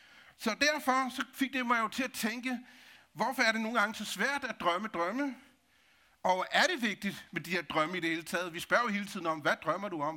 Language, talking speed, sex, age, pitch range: Danish, 250 wpm, male, 60-79, 180-245 Hz